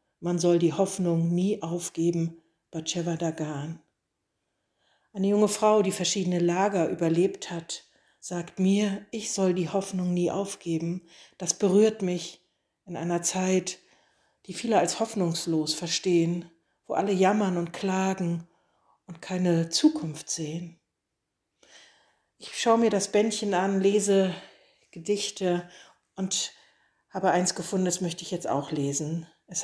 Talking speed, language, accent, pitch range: 130 wpm, German, German, 165-190 Hz